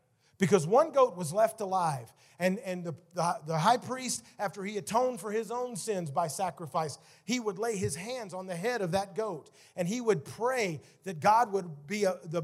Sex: male